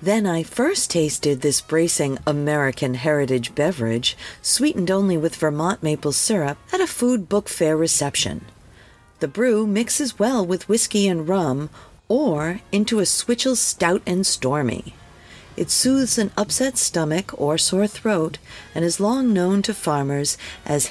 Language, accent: English, American